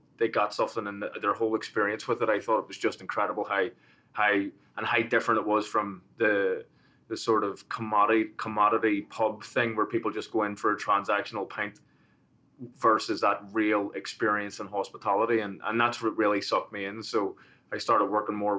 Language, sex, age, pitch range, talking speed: English, male, 20-39, 100-110 Hz, 195 wpm